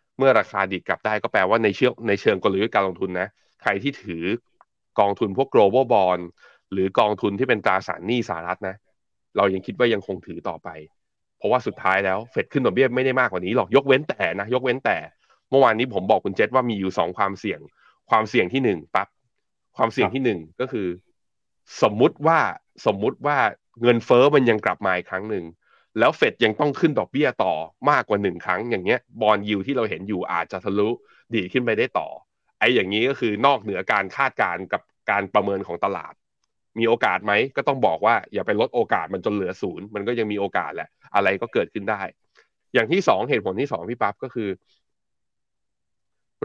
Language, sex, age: Thai, male, 20-39